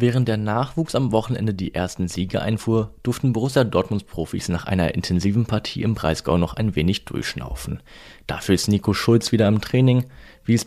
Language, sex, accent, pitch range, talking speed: German, male, German, 95-120 Hz, 175 wpm